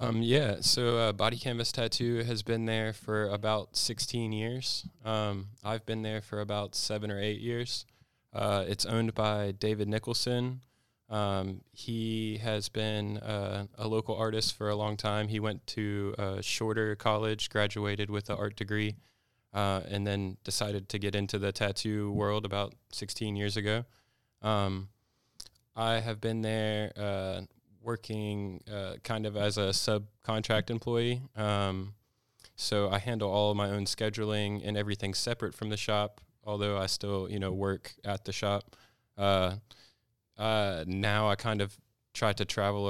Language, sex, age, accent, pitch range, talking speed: English, male, 20-39, American, 100-110 Hz, 160 wpm